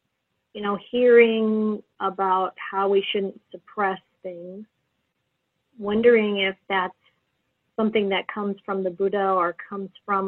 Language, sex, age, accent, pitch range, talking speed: English, female, 40-59, American, 185-220 Hz, 125 wpm